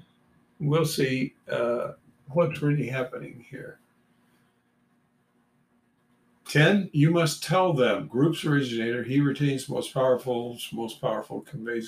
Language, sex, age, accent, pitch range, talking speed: English, male, 50-69, American, 110-145 Hz, 105 wpm